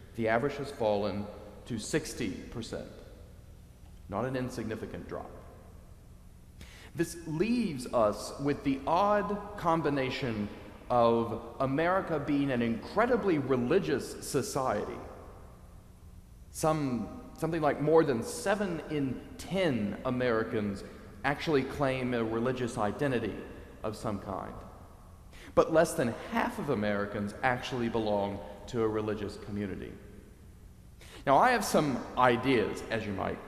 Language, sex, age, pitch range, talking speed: English, male, 40-59, 100-140 Hz, 110 wpm